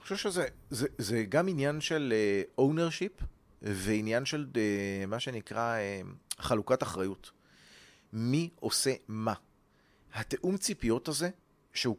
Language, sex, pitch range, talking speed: Hebrew, male, 110-150 Hz, 125 wpm